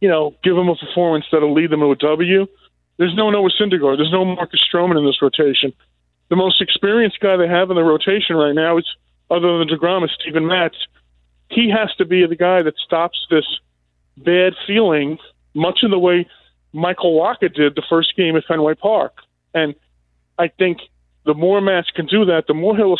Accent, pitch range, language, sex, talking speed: American, 145-180 Hz, English, male, 200 wpm